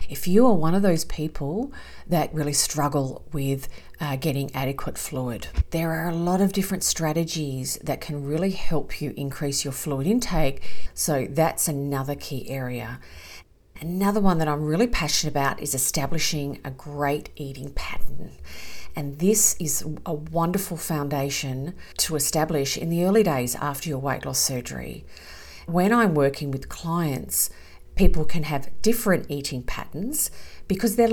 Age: 40-59